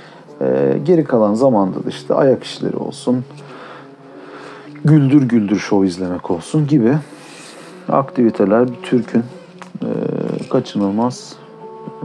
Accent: native